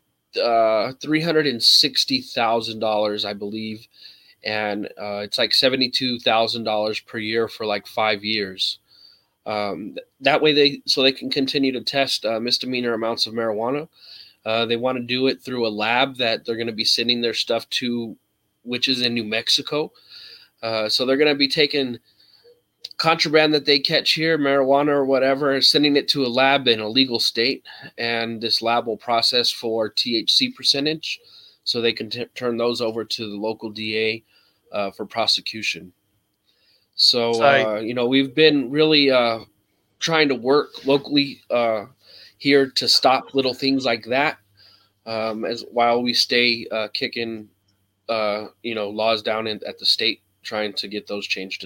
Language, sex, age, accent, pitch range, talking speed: English, male, 20-39, American, 110-135 Hz, 160 wpm